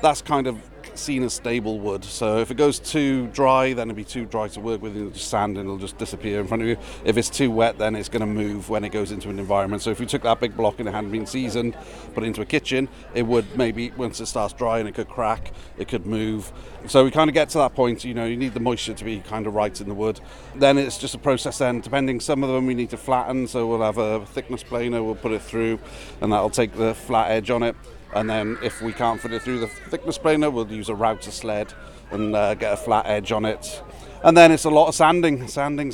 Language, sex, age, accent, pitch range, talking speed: English, male, 40-59, British, 110-130 Hz, 275 wpm